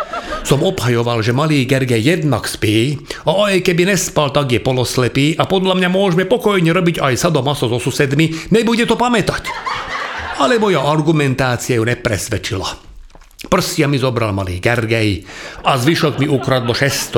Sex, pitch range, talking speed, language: male, 120-175 Hz, 145 wpm, Slovak